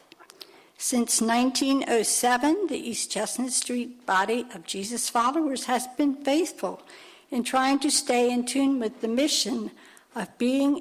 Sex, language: female, English